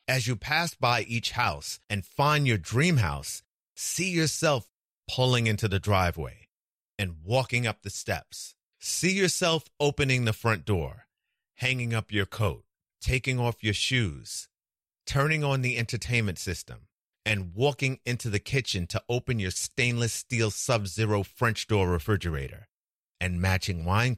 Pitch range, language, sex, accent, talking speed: 95-130 Hz, English, male, American, 145 wpm